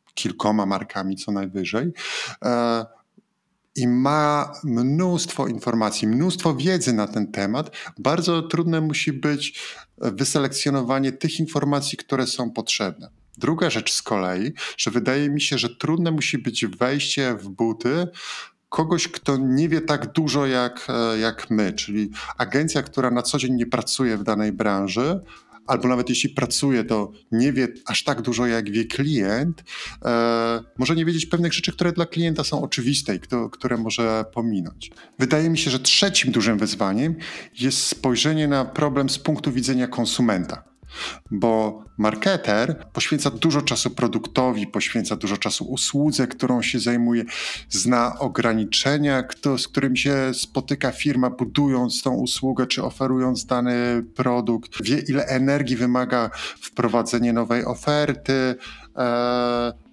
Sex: male